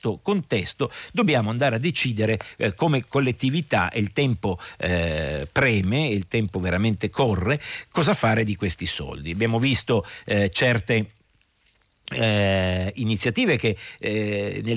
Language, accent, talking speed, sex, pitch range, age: Italian, native, 120 wpm, male, 100-130 Hz, 50-69